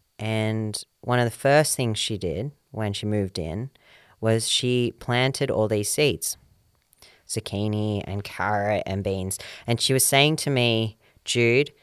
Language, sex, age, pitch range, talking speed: English, female, 30-49, 105-125 Hz, 150 wpm